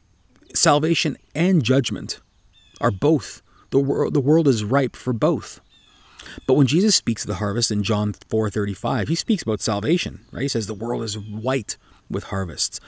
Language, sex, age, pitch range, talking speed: English, male, 30-49, 105-140 Hz, 175 wpm